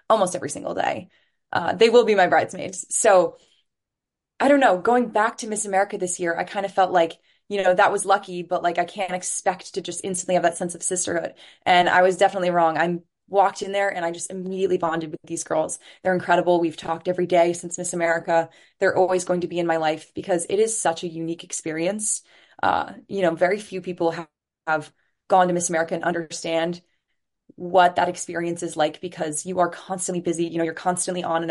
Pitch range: 165-185 Hz